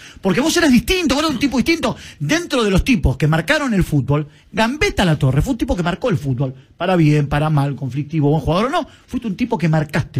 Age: 40-59